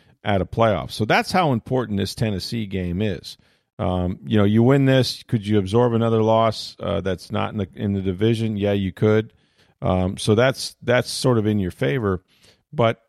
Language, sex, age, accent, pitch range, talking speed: English, male, 40-59, American, 95-120 Hz, 195 wpm